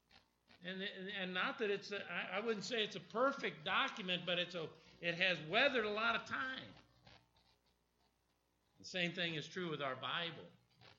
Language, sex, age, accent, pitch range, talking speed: English, male, 50-69, American, 135-190 Hz, 170 wpm